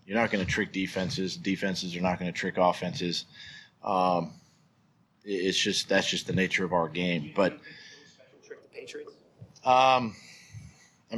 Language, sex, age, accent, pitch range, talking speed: English, male, 40-59, American, 90-105 Hz, 140 wpm